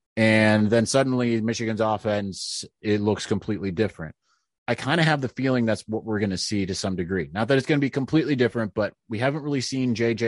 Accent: American